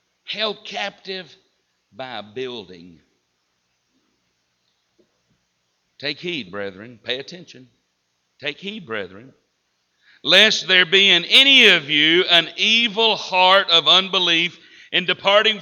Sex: male